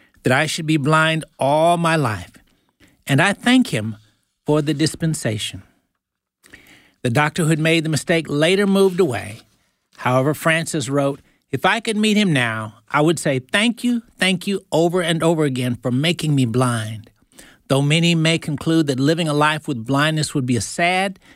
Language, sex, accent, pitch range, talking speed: English, male, American, 130-180 Hz, 175 wpm